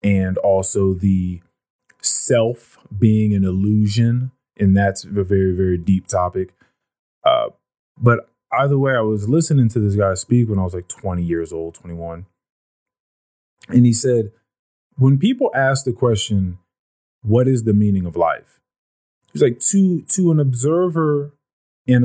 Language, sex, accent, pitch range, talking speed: English, male, American, 100-130 Hz, 145 wpm